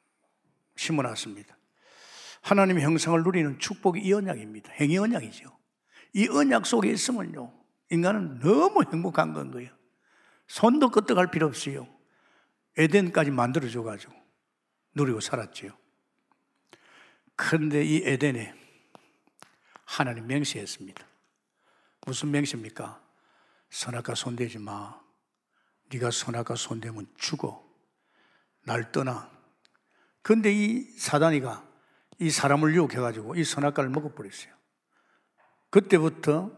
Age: 60-79